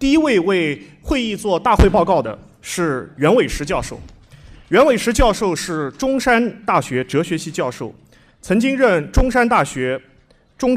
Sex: male